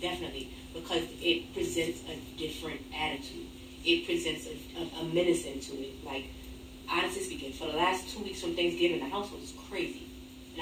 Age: 30-49